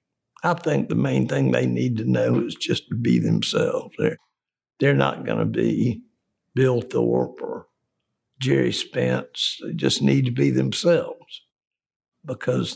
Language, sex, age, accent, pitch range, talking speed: English, male, 60-79, American, 125-185 Hz, 150 wpm